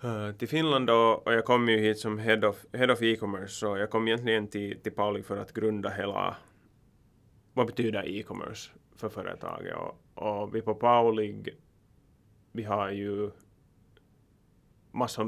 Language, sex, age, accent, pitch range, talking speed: Swedish, male, 20-39, Finnish, 105-115 Hz, 155 wpm